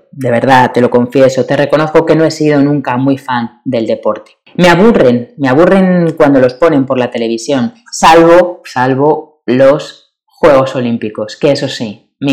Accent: Spanish